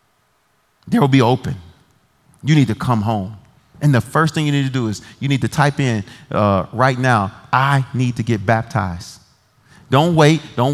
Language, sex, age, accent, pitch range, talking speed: English, male, 40-59, American, 115-160 Hz, 190 wpm